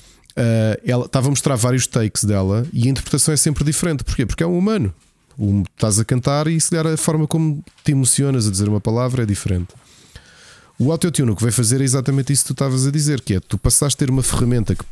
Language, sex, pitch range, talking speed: Portuguese, male, 105-145 Hz, 235 wpm